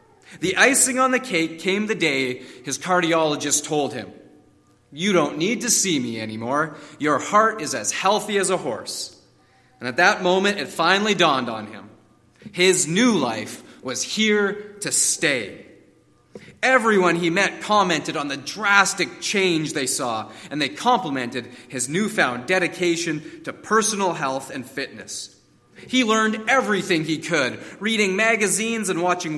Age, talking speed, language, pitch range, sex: 30-49, 150 wpm, English, 155-220 Hz, male